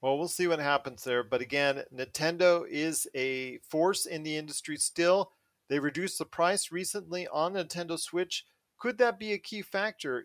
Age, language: 40-59, English